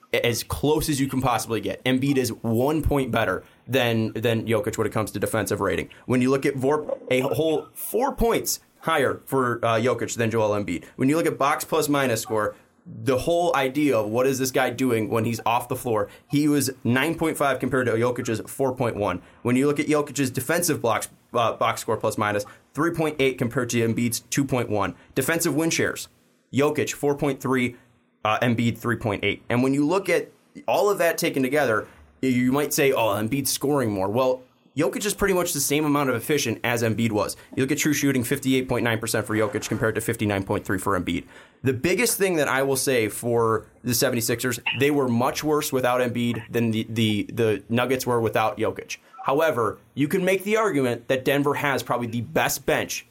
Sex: male